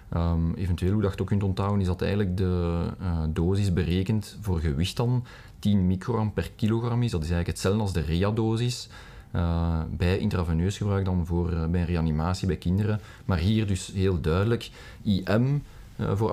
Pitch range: 85-110 Hz